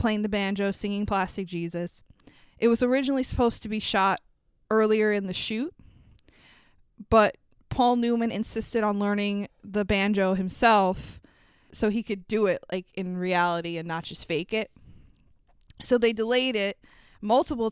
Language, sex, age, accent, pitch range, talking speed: English, female, 20-39, American, 190-225 Hz, 150 wpm